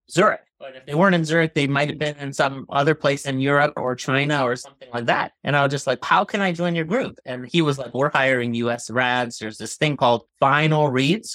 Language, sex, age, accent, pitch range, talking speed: English, male, 30-49, American, 125-150 Hz, 255 wpm